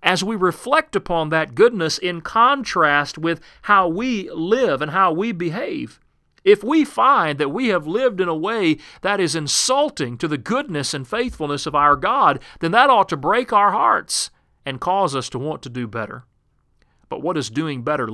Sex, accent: male, American